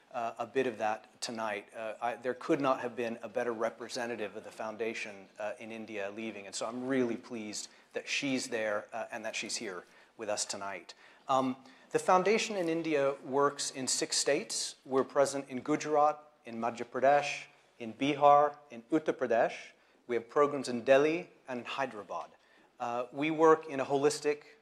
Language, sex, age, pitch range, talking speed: English, male, 40-59, 120-140 Hz, 175 wpm